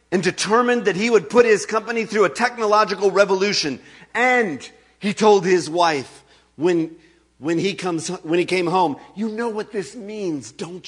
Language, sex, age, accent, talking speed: English, male, 40-59, American, 170 wpm